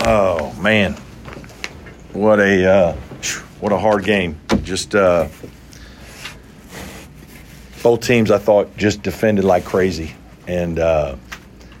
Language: English